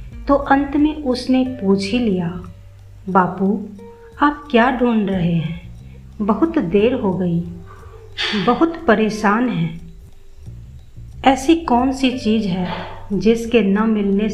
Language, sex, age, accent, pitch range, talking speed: Hindi, female, 50-69, native, 175-235 Hz, 115 wpm